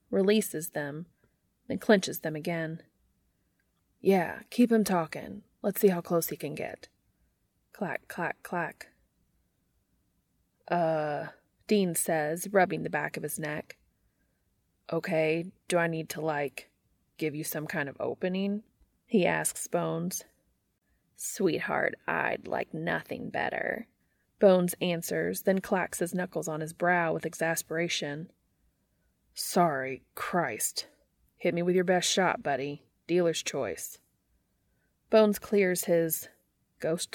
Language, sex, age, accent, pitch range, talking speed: English, female, 20-39, American, 150-190 Hz, 120 wpm